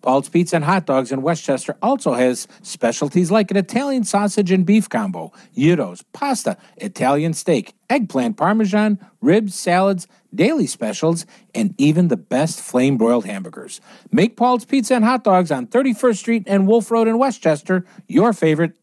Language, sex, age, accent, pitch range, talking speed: English, male, 50-69, American, 160-230 Hz, 155 wpm